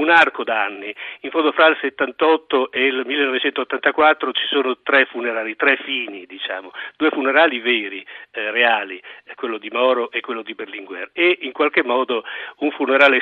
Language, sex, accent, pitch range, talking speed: Italian, male, native, 130-215 Hz, 165 wpm